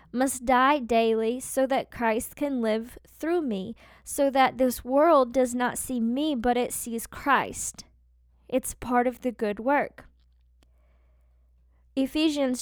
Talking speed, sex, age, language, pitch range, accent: 140 wpm, female, 10-29, English, 225-270 Hz, American